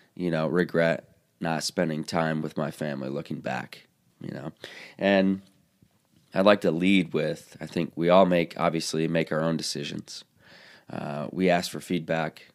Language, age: English, 20-39